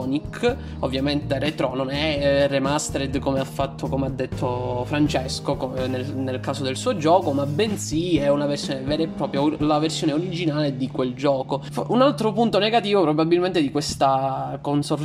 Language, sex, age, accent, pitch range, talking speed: Italian, male, 20-39, native, 140-175 Hz, 160 wpm